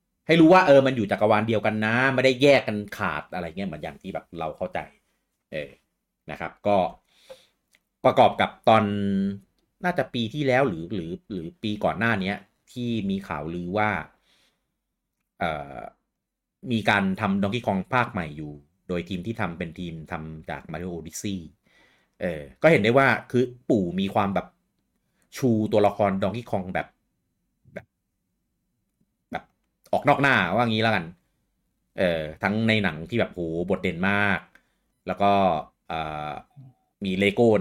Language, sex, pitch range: Thai, male, 90-110 Hz